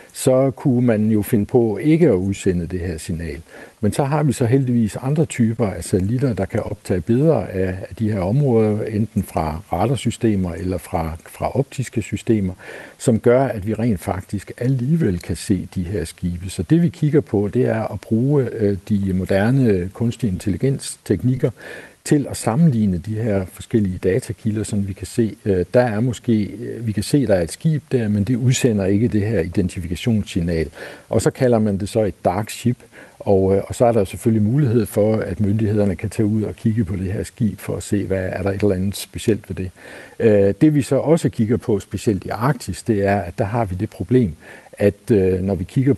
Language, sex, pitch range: Danish, male, 95-125 Hz